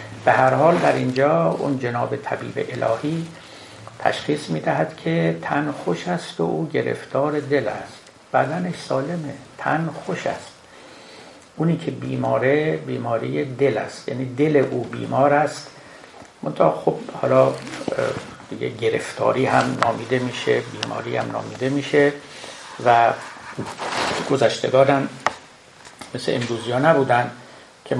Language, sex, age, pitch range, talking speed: Persian, male, 60-79, 120-140 Hz, 115 wpm